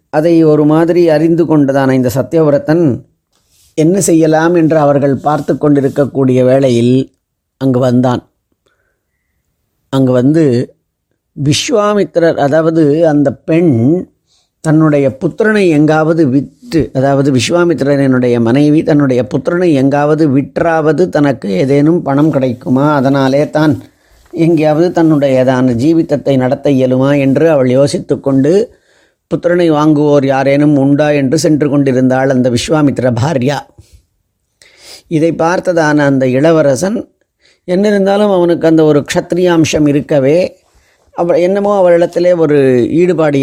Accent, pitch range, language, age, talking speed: native, 135-165 Hz, Tamil, 30-49, 105 wpm